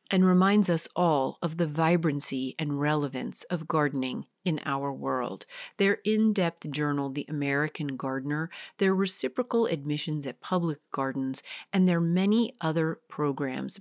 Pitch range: 145-195 Hz